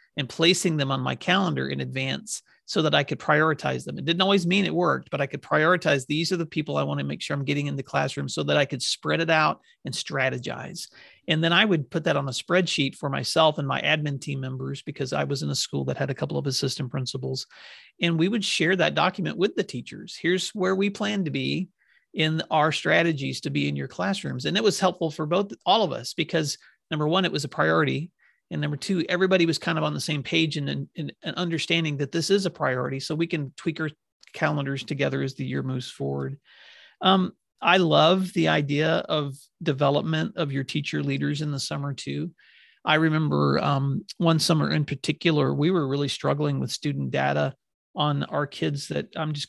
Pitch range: 135-170 Hz